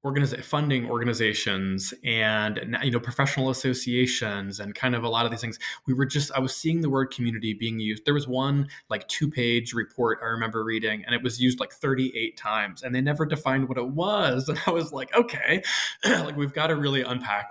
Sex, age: male, 20-39